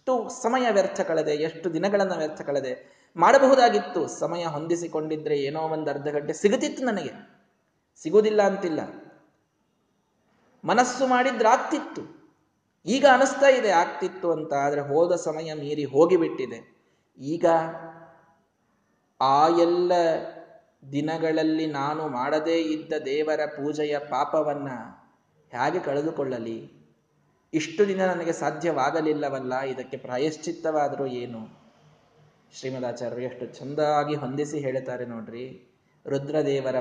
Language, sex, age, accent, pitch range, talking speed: Kannada, male, 20-39, native, 145-205 Hz, 95 wpm